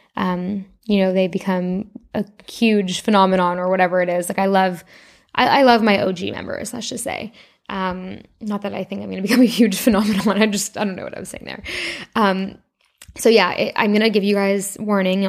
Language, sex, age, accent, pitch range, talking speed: English, female, 10-29, American, 190-220 Hz, 220 wpm